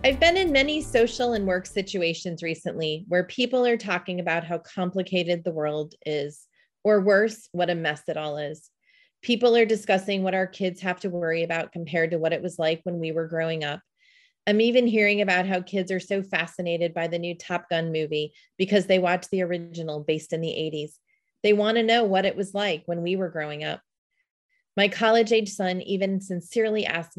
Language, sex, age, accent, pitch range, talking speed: English, female, 30-49, American, 165-205 Hz, 200 wpm